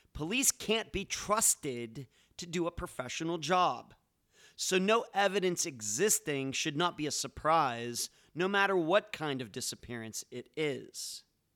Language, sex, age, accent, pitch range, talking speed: English, male, 40-59, American, 135-185 Hz, 135 wpm